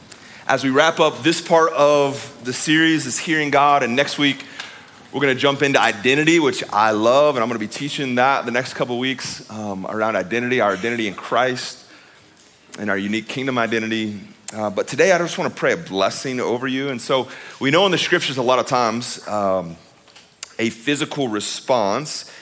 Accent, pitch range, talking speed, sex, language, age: American, 100-135 Hz, 200 wpm, male, English, 30-49